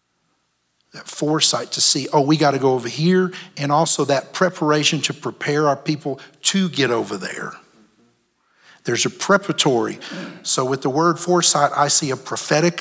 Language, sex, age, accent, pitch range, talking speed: English, male, 50-69, American, 140-180 Hz, 165 wpm